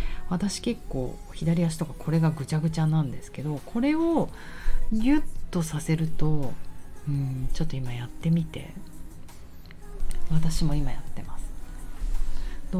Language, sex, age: Japanese, female, 40-59